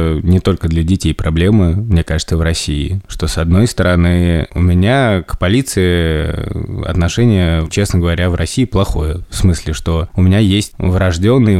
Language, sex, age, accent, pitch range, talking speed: Russian, male, 20-39, native, 80-100 Hz, 155 wpm